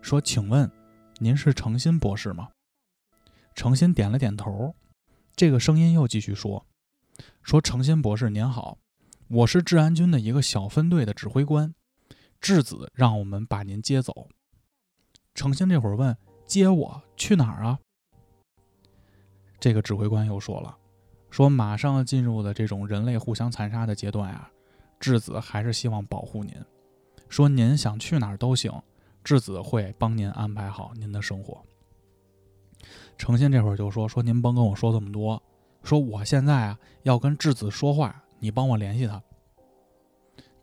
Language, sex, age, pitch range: Chinese, male, 20-39, 100-130 Hz